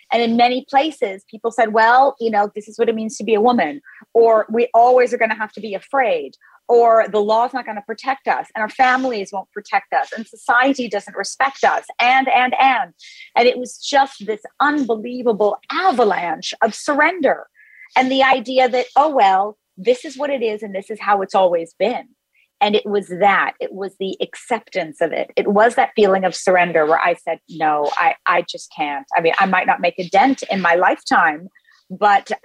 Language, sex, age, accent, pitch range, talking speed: English, female, 30-49, American, 200-260 Hz, 210 wpm